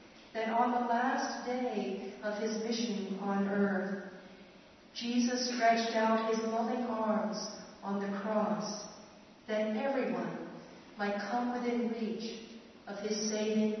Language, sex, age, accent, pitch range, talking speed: English, female, 50-69, American, 215-245 Hz, 120 wpm